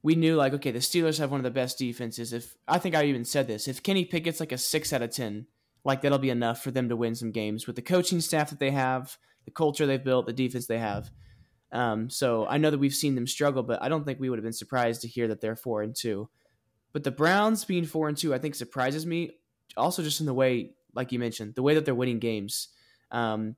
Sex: male